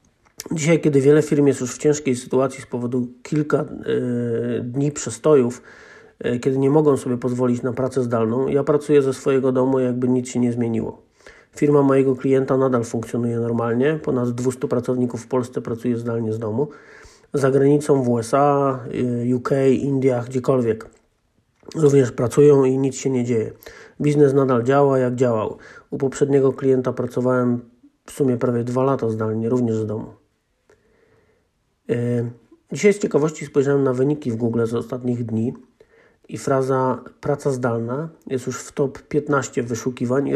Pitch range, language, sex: 120-140 Hz, Polish, male